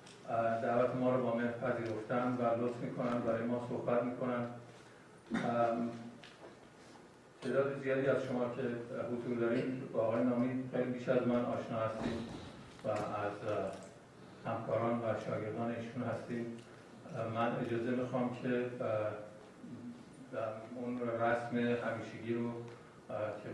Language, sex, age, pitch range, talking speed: Persian, male, 50-69, 115-125 Hz, 120 wpm